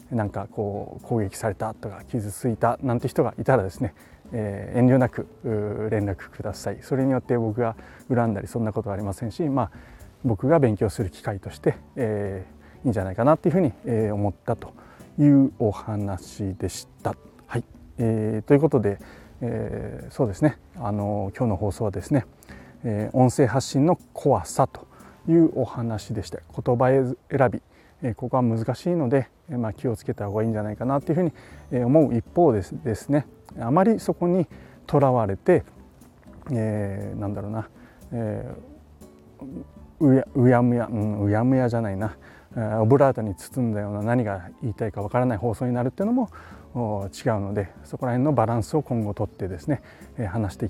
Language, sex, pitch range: Japanese, male, 100-130 Hz